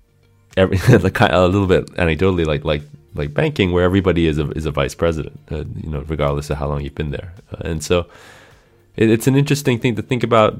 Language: English